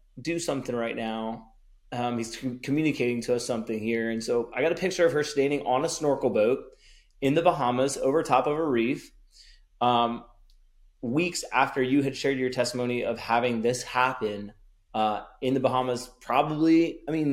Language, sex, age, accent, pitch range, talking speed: English, male, 30-49, American, 105-135 Hz, 175 wpm